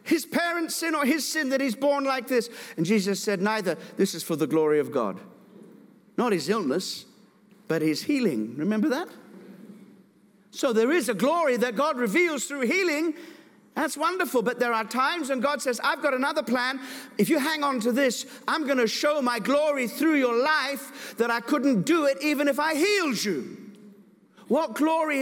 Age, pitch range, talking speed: 50-69, 220-285 Hz, 190 wpm